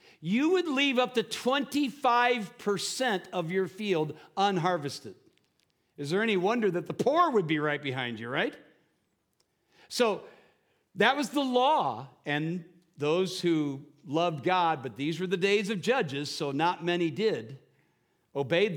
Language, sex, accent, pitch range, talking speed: English, male, American, 150-205 Hz, 145 wpm